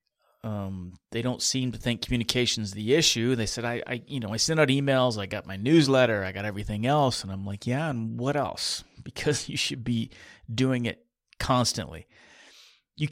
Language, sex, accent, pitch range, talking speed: English, male, American, 100-125 Hz, 190 wpm